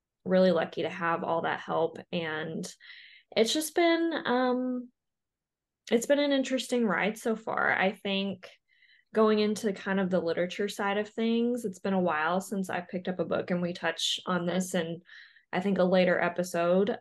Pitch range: 170-205 Hz